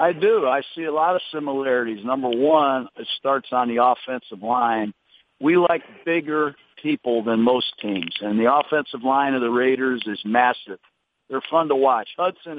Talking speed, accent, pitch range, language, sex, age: 175 wpm, American, 115-150 Hz, English, male, 50-69